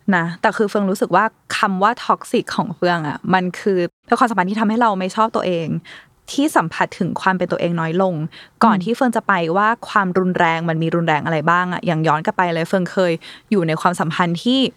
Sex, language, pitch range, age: female, Thai, 185-245 Hz, 20-39